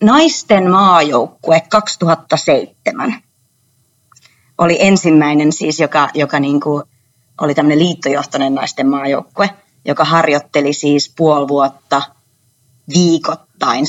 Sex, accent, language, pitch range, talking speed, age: female, native, Finnish, 130-170 Hz, 80 wpm, 30-49